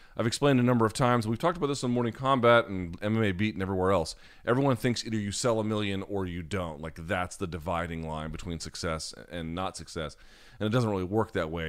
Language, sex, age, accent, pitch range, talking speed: English, male, 30-49, American, 85-105 Hz, 235 wpm